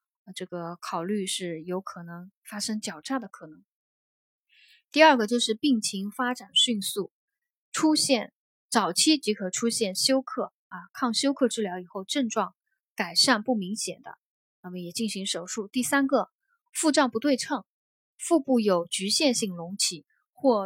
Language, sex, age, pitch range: Chinese, female, 20-39, 190-260 Hz